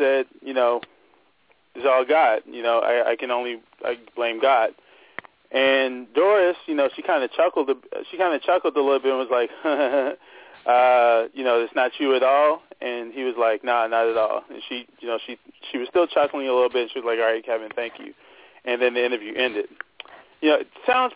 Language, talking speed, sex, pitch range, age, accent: English, 225 wpm, male, 120-155 Hz, 30-49, American